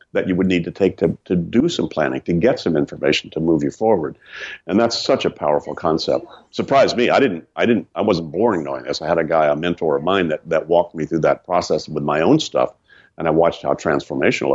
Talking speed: 250 wpm